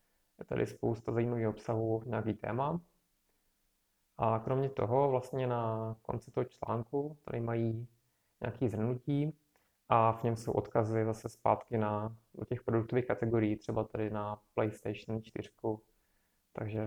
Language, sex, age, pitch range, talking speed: Czech, male, 20-39, 110-120 Hz, 130 wpm